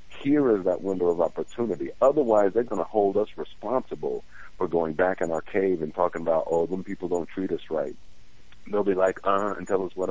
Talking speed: 220 wpm